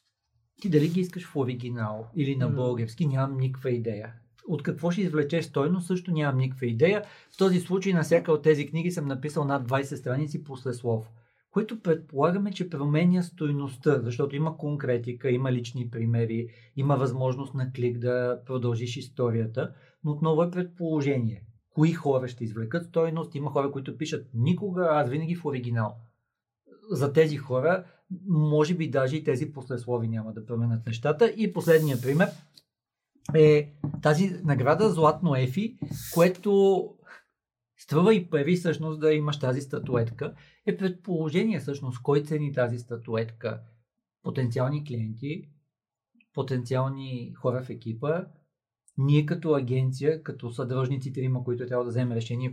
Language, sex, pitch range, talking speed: Bulgarian, male, 125-160 Hz, 145 wpm